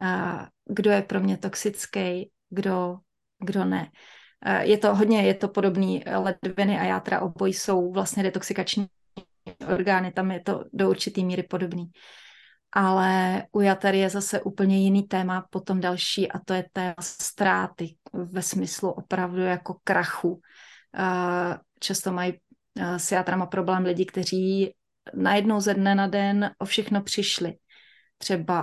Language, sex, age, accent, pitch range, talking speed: Czech, female, 30-49, native, 180-200 Hz, 130 wpm